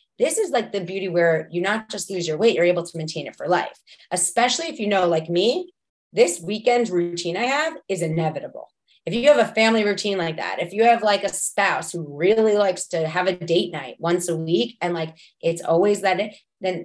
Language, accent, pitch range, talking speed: English, American, 165-205 Hz, 225 wpm